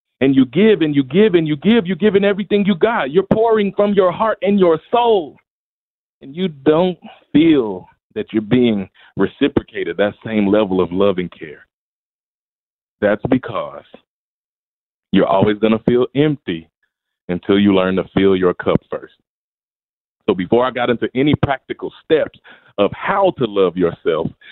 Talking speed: 160 wpm